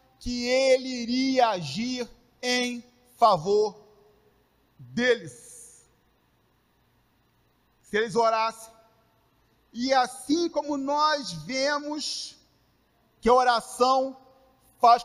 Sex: male